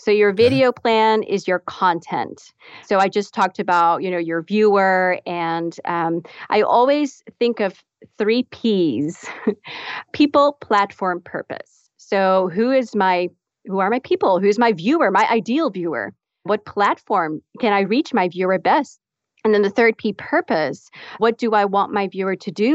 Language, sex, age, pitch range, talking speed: English, female, 40-59, 185-230 Hz, 165 wpm